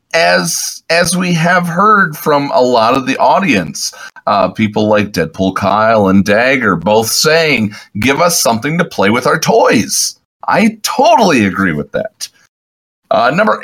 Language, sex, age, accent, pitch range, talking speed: English, male, 40-59, American, 105-175 Hz, 155 wpm